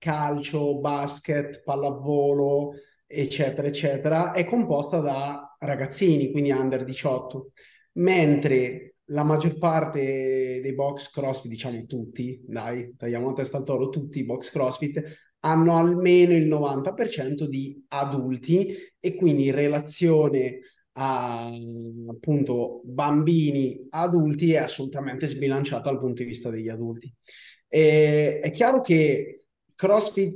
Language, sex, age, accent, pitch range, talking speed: Italian, male, 30-49, native, 135-170 Hz, 115 wpm